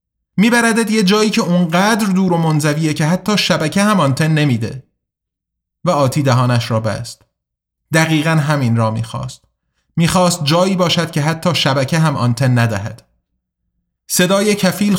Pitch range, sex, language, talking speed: 130-180 Hz, male, Persian, 135 wpm